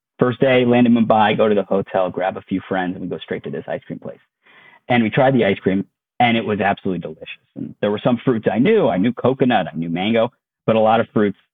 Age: 40-59